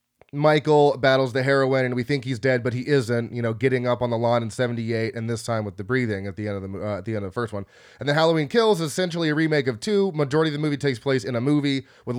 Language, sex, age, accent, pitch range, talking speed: English, male, 20-39, American, 120-145 Hz, 295 wpm